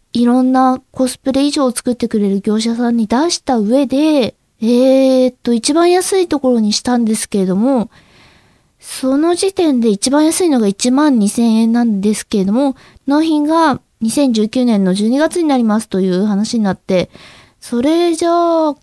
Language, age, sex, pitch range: Japanese, 20-39, female, 215-285 Hz